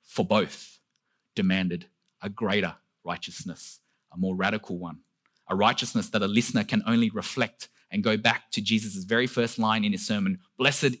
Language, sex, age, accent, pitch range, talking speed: English, male, 20-39, Australian, 105-140 Hz, 165 wpm